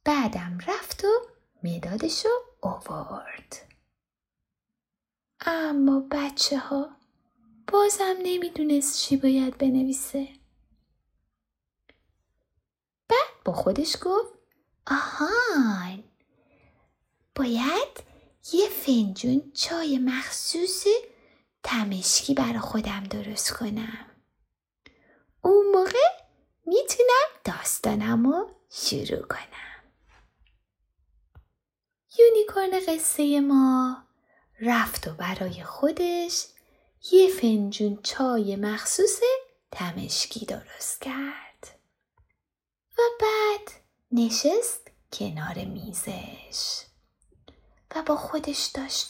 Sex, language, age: female, Persian, 20-39